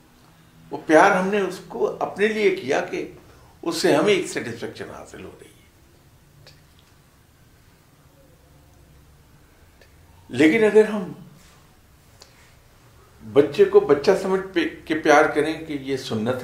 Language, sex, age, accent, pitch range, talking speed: English, male, 60-79, Indian, 100-140 Hz, 100 wpm